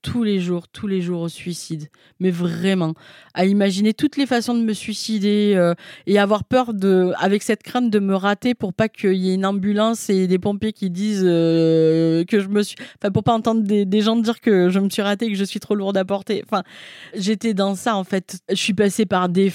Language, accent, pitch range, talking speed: French, French, 175-215 Hz, 240 wpm